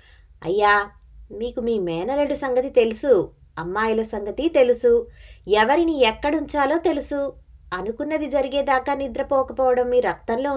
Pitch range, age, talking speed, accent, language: 190-285 Hz, 20-39, 95 wpm, native, Telugu